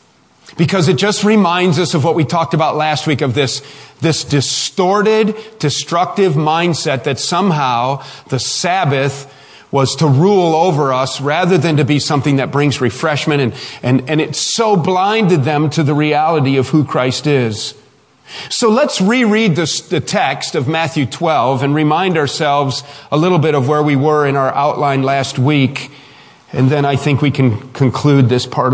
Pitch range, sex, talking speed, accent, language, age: 135-175 Hz, male, 170 wpm, American, English, 40-59